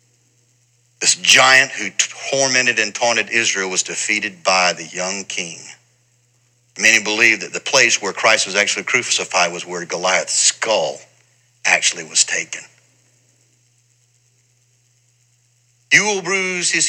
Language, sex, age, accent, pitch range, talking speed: English, male, 60-79, American, 120-150 Hz, 120 wpm